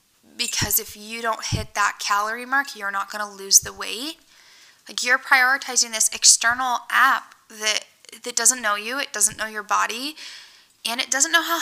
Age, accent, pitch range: 10-29, American, 215-280 Hz